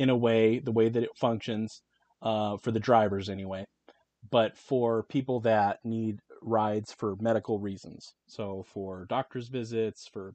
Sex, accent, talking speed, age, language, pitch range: male, American, 155 wpm, 30-49, English, 100-115 Hz